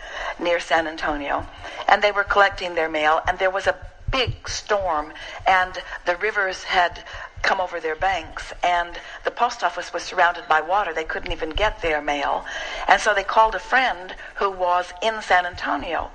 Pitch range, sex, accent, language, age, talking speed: 170-195 Hz, female, American, English, 60-79, 180 wpm